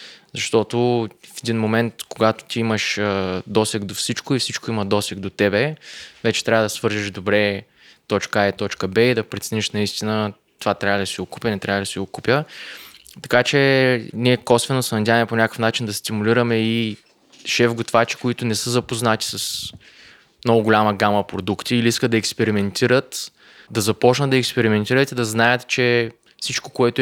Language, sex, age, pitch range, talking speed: Bulgarian, male, 20-39, 105-120 Hz, 170 wpm